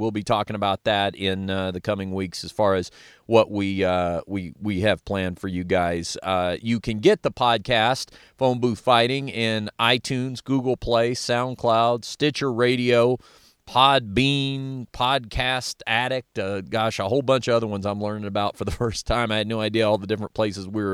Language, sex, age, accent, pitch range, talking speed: English, male, 40-59, American, 95-120 Hz, 195 wpm